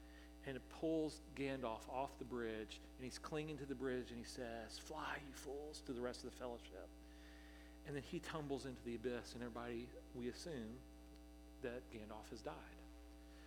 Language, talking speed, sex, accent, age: English, 180 wpm, male, American, 40-59